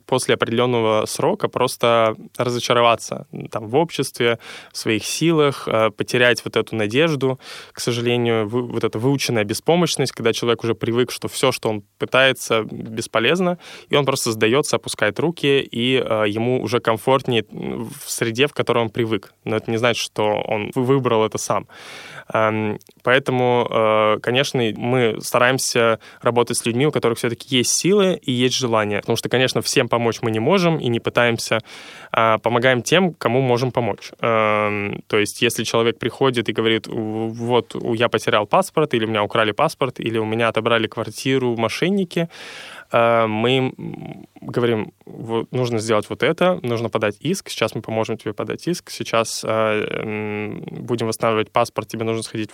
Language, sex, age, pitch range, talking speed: Russian, male, 10-29, 110-130 Hz, 155 wpm